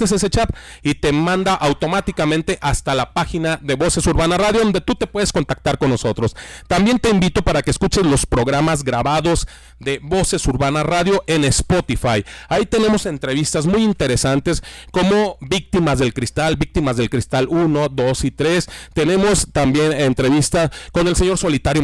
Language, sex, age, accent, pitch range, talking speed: Spanish, male, 40-59, Mexican, 140-195 Hz, 160 wpm